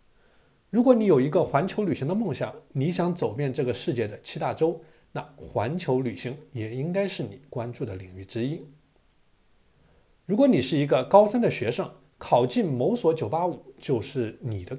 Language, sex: Chinese, male